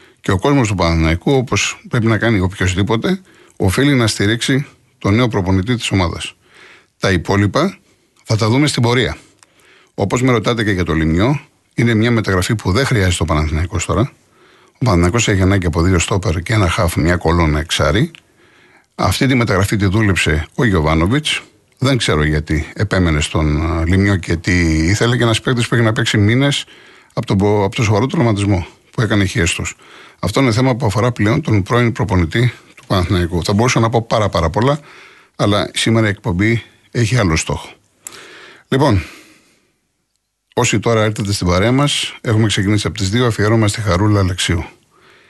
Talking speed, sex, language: 165 wpm, male, Greek